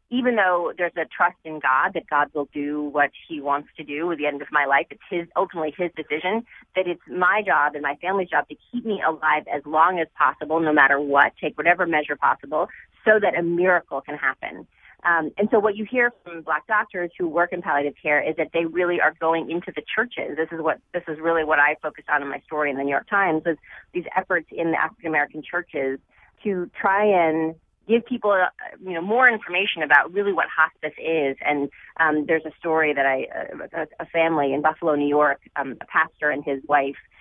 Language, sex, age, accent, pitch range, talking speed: English, female, 30-49, American, 145-175 Hz, 225 wpm